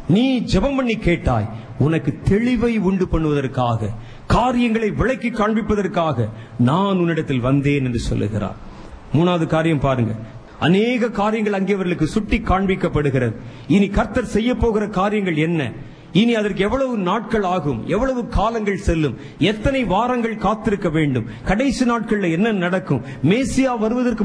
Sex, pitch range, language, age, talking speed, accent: male, 135-220 Hz, Tamil, 30-49, 110 wpm, native